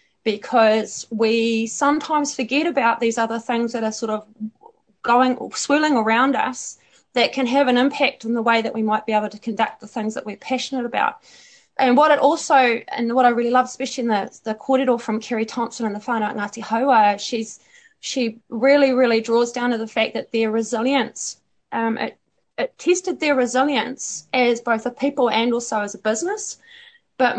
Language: English